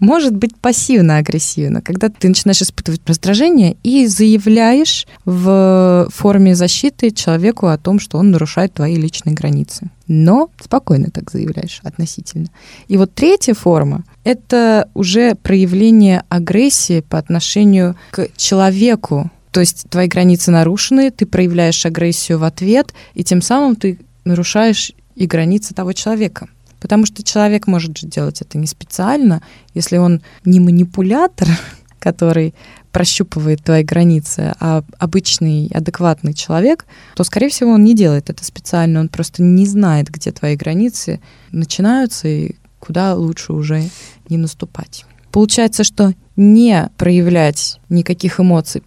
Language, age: Russian, 20-39